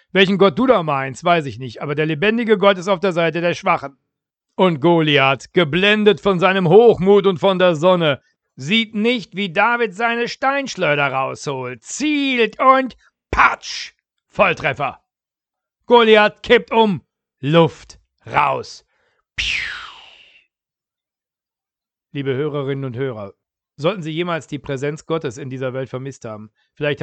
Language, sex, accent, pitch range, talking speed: German, male, German, 135-190 Hz, 135 wpm